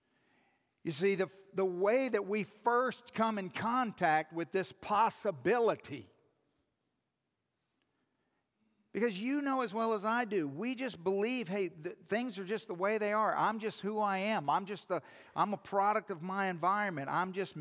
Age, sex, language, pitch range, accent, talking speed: 50-69, male, English, 145-200 Hz, American, 170 wpm